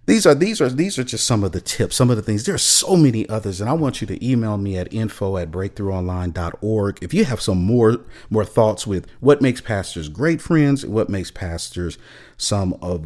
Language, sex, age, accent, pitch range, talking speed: English, male, 40-59, American, 90-120 Hz, 225 wpm